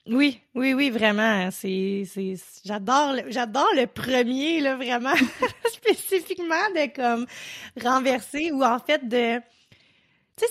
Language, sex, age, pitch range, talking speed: French, female, 20-39, 205-250 Hz, 135 wpm